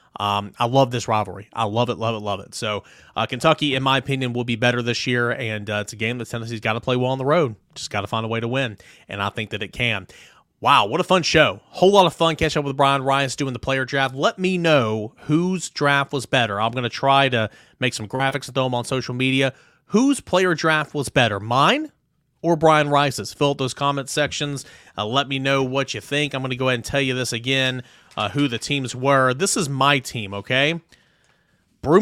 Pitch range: 120-150 Hz